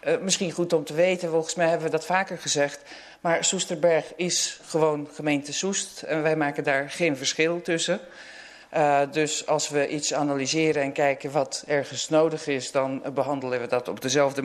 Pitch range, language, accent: 135-160 Hz, Dutch, Dutch